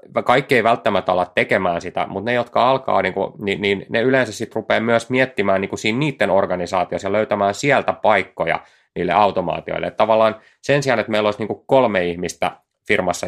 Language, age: Finnish, 30-49